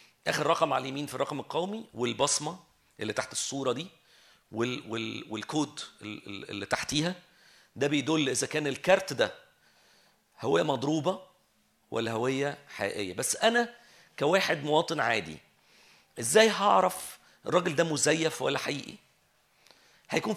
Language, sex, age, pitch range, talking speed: Arabic, male, 40-59, 130-170 Hz, 120 wpm